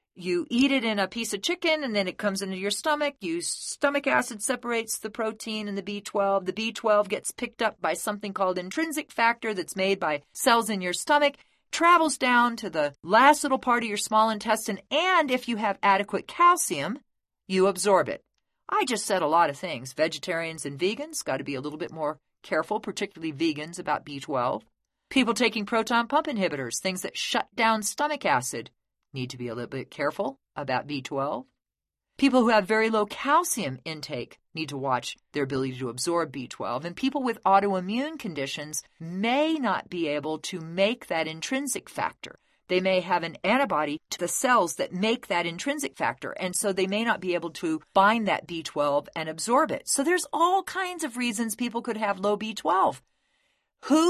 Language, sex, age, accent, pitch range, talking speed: English, female, 40-59, American, 165-245 Hz, 190 wpm